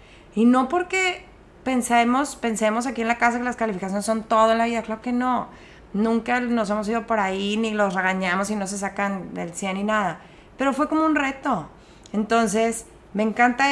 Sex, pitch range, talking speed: female, 195-235 Hz, 195 wpm